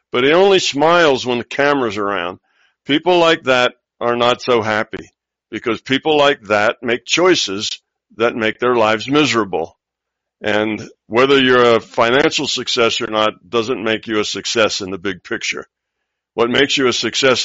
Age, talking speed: 60-79, 165 wpm